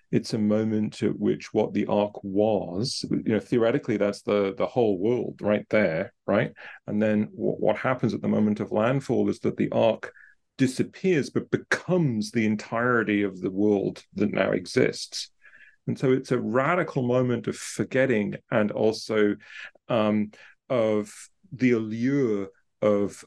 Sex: male